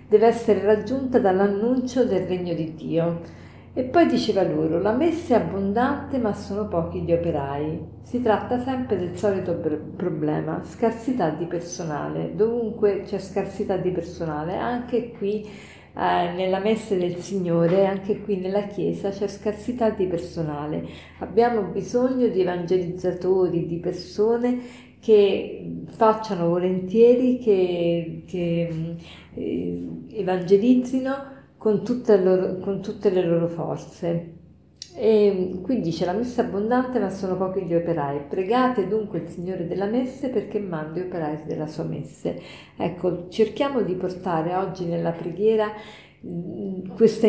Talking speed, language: 125 wpm, Italian